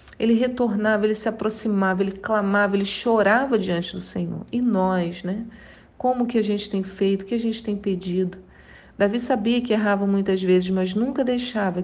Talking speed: 180 wpm